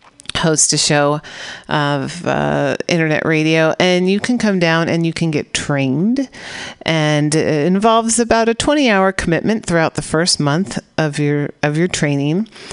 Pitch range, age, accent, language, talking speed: 150-185 Hz, 40-59, American, English, 160 wpm